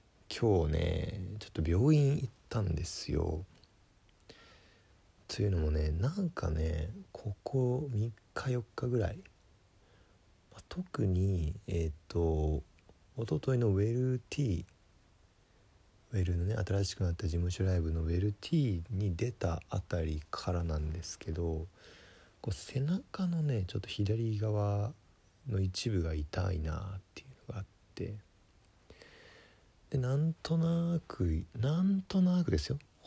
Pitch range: 85-115 Hz